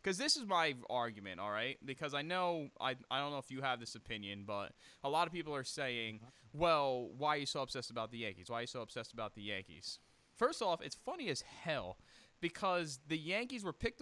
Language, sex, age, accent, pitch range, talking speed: English, male, 20-39, American, 120-175 Hz, 225 wpm